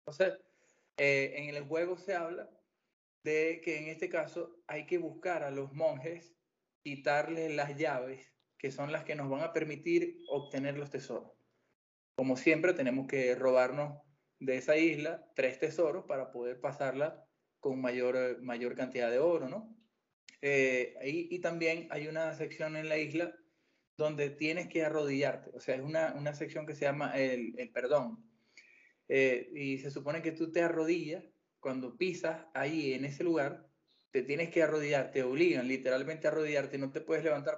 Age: 20-39